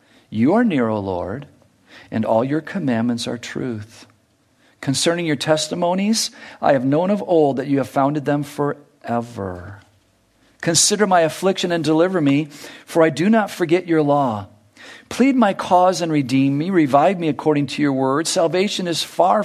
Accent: American